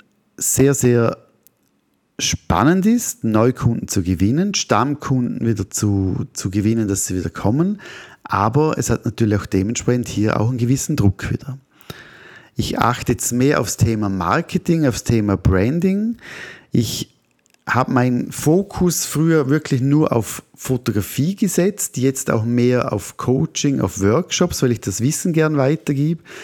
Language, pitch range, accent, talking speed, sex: German, 110-155 Hz, German, 140 wpm, male